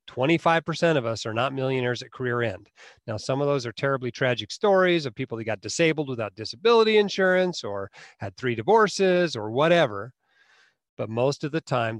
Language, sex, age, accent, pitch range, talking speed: English, male, 40-59, American, 115-160 Hz, 175 wpm